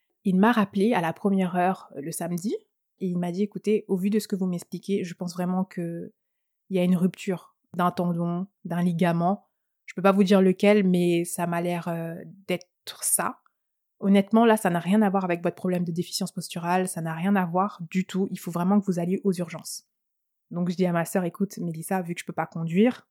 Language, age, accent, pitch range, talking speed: French, 20-39, French, 175-205 Hz, 225 wpm